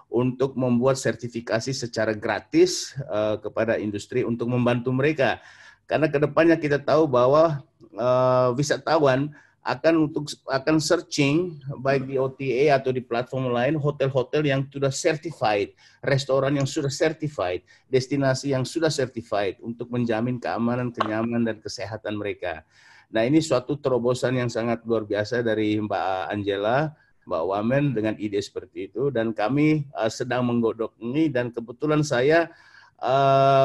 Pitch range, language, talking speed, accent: 115-140 Hz, Indonesian, 135 wpm, native